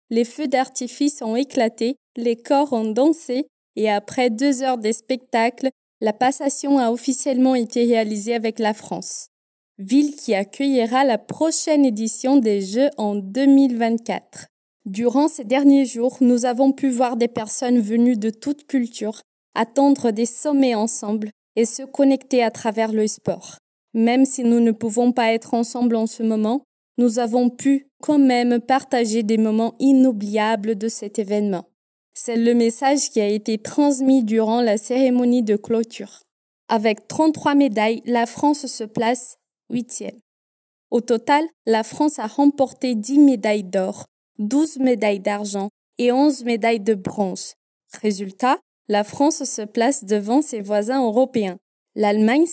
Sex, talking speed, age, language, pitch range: female, 150 wpm, 20-39, Portuguese, 220-265 Hz